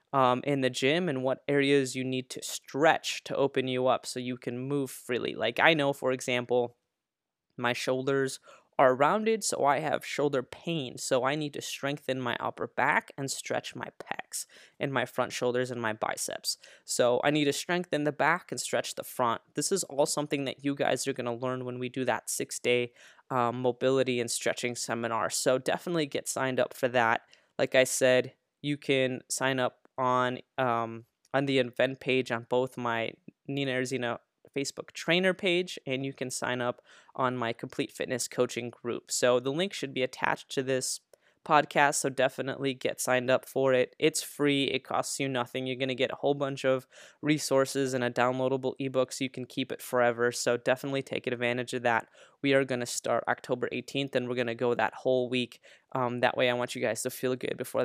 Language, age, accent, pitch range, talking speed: English, 20-39, American, 125-140 Hz, 205 wpm